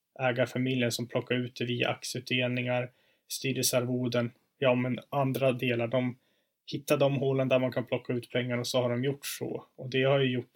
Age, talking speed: 20-39, 190 wpm